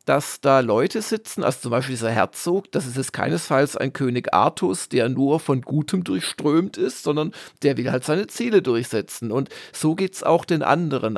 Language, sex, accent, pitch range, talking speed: German, male, German, 135-175 Hz, 195 wpm